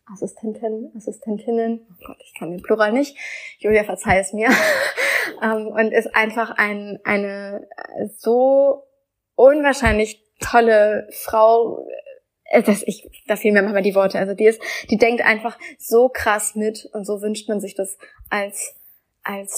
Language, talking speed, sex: German, 140 wpm, female